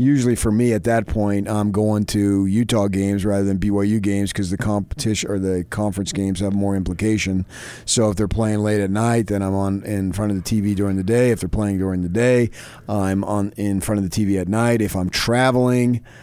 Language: English